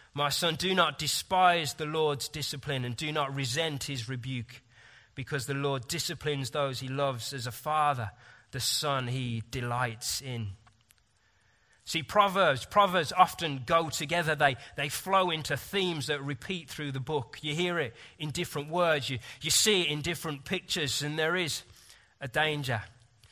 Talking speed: 160 wpm